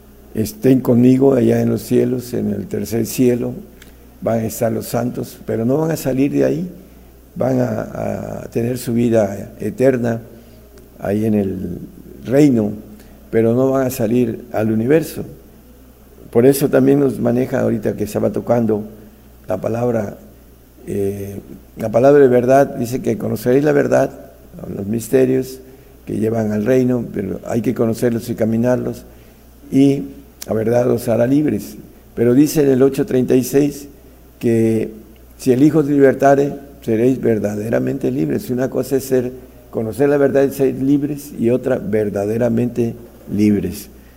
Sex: male